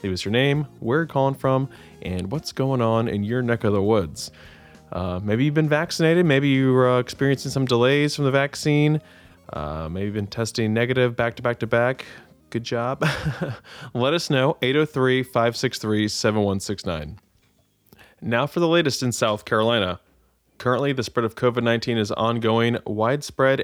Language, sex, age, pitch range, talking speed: English, male, 20-39, 110-135 Hz, 160 wpm